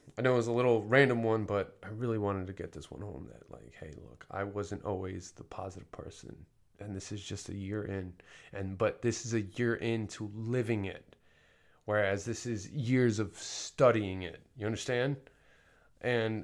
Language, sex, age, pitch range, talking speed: English, male, 20-39, 100-125 Hz, 195 wpm